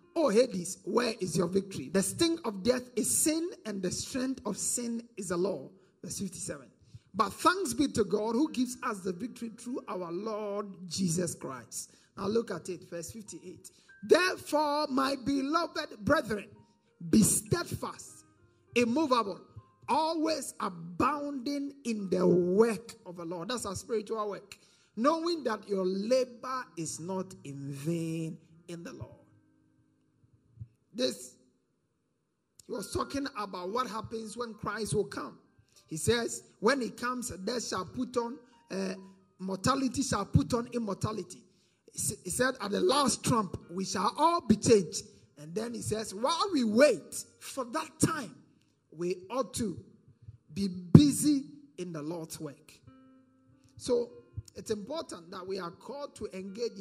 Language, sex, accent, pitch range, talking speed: English, male, Nigerian, 180-250 Hz, 145 wpm